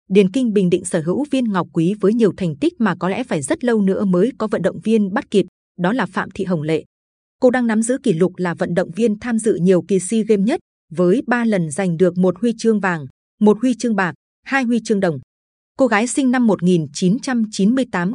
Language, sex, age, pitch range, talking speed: Vietnamese, female, 20-39, 180-230 Hz, 240 wpm